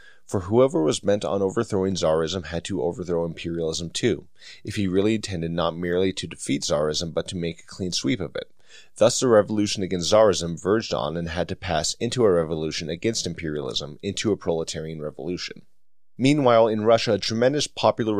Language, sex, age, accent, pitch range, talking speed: English, male, 30-49, American, 85-105 Hz, 180 wpm